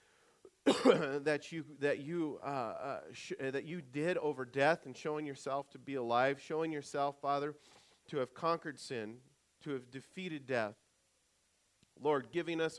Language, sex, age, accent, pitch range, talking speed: English, male, 40-59, American, 130-155 Hz, 150 wpm